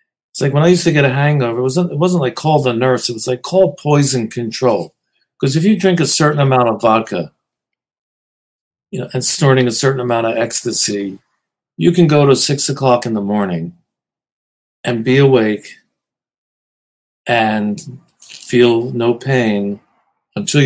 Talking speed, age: 170 wpm, 50-69